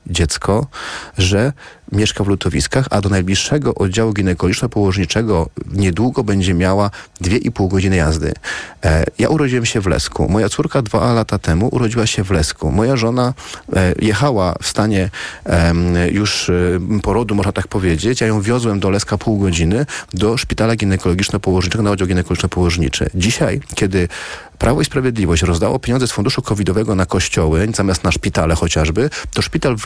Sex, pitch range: male, 95-120 Hz